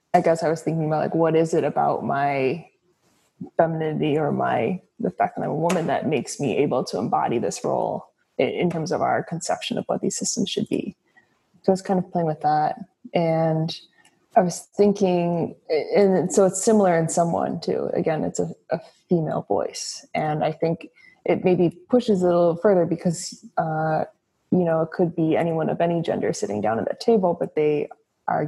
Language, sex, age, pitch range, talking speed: English, female, 20-39, 160-195 Hz, 200 wpm